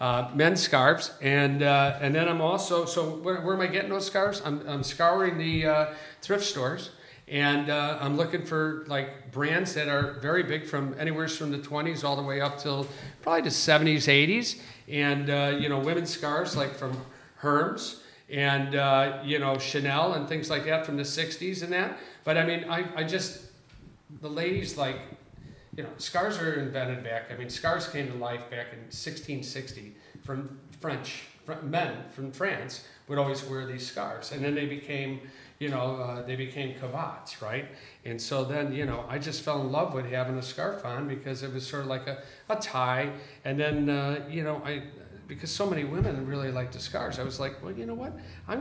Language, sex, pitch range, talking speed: English, male, 135-160 Hz, 200 wpm